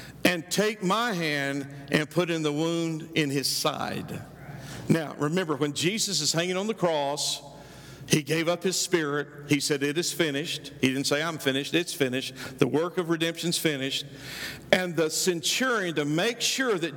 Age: 50-69